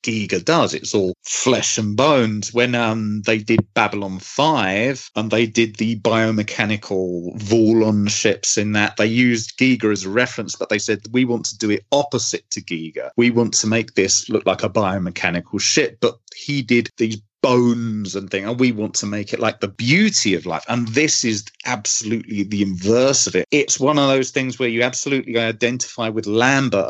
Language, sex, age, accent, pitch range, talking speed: English, male, 30-49, British, 105-130 Hz, 190 wpm